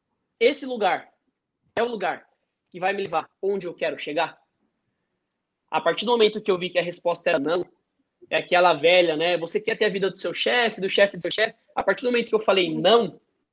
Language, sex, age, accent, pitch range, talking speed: Portuguese, male, 20-39, Brazilian, 200-260 Hz, 220 wpm